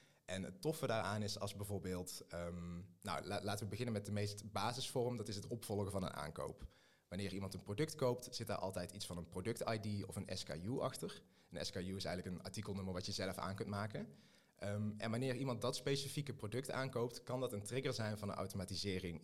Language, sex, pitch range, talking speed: Dutch, male, 95-115 Hz, 205 wpm